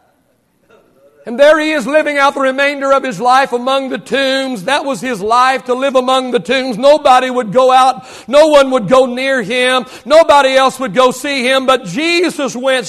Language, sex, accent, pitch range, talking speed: English, male, American, 240-275 Hz, 195 wpm